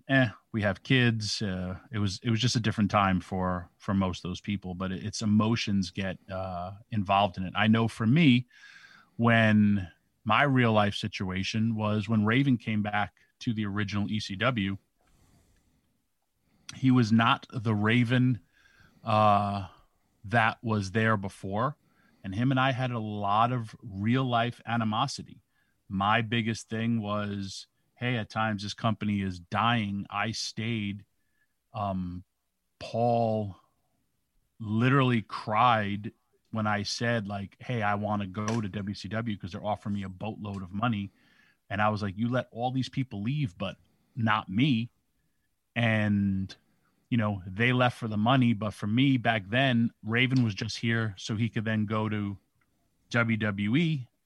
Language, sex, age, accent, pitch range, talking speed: English, male, 30-49, American, 100-120 Hz, 155 wpm